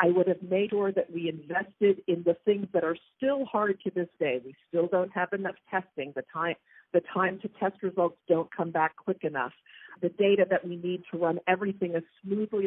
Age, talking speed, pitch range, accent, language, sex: 50-69, 220 wpm, 160-200 Hz, American, English, female